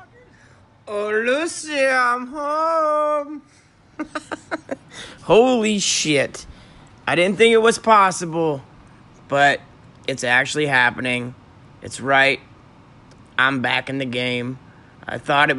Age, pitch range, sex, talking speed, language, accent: 30-49, 140-195 Hz, male, 100 wpm, English, American